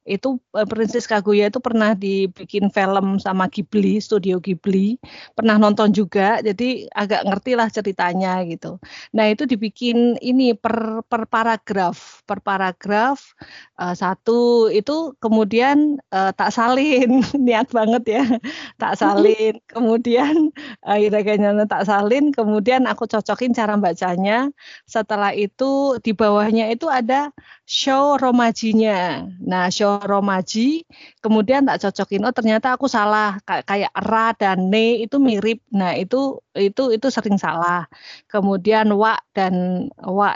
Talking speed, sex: 125 wpm, female